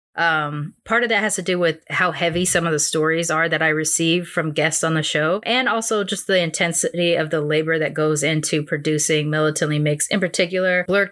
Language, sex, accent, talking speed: English, female, American, 215 wpm